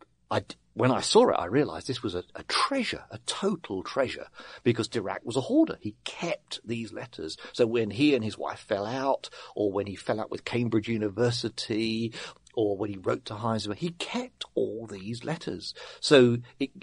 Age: 50-69